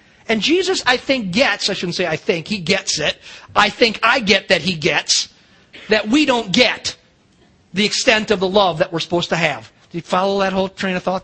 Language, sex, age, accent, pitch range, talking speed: English, male, 40-59, American, 195-260 Hz, 225 wpm